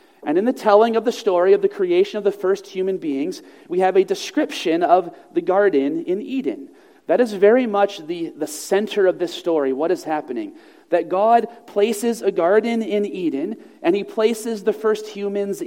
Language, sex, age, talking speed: English, male, 40-59, 190 wpm